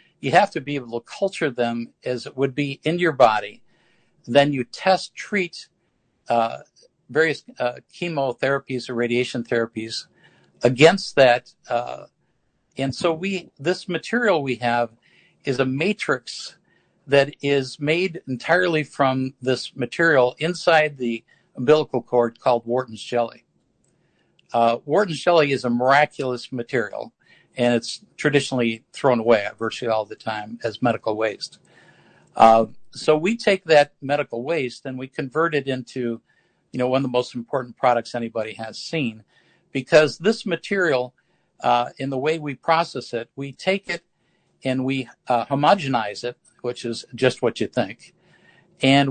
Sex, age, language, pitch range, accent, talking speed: male, 60-79, English, 120-160 Hz, American, 145 wpm